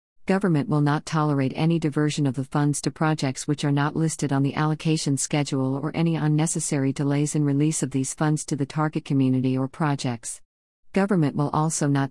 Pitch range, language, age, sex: 135-160 Hz, English, 50-69, female